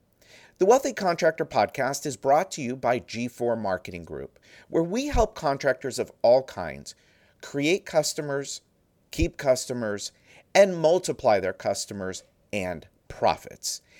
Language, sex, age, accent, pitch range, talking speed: English, male, 50-69, American, 110-175 Hz, 125 wpm